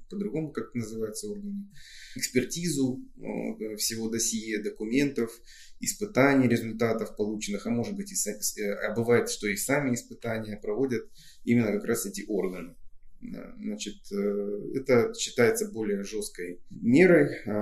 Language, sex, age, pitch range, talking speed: Russian, male, 20-39, 100-125 Hz, 105 wpm